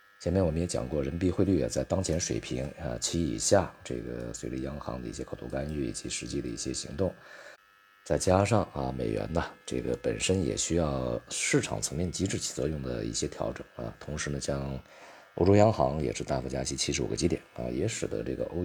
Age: 50-69